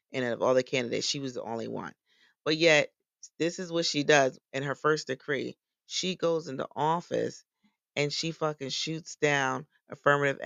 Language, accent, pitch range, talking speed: English, American, 130-155 Hz, 180 wpm